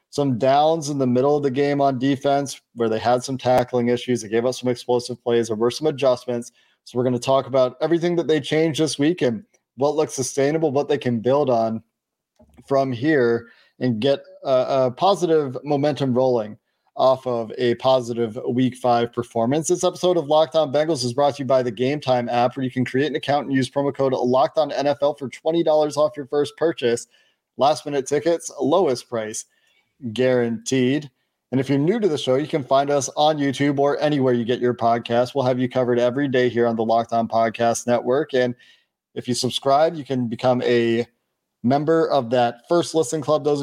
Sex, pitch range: male, 120-145 Hz